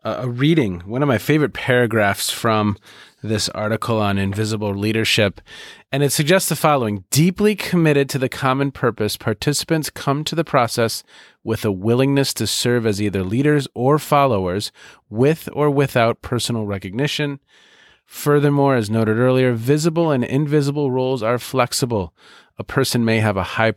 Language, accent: English, American